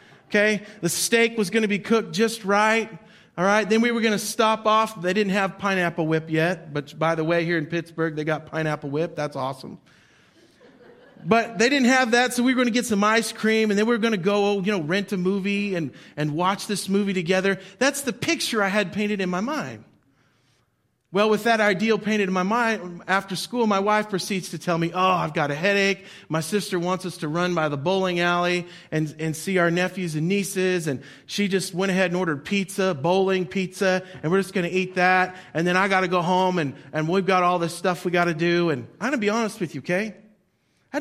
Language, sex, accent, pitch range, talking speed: English, male, American, 170-210 Hz, 235 wpm